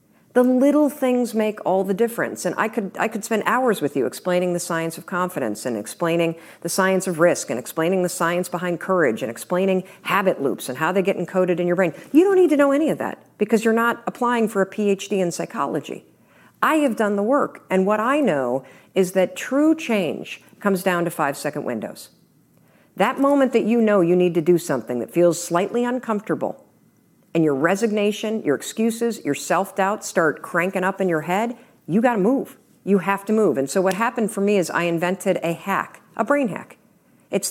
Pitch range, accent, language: 170-225 Hz, American, English